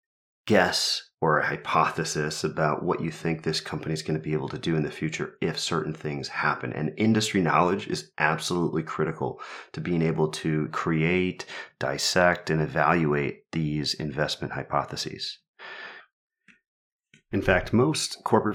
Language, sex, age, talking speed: English, male, 30-49, 145 wpm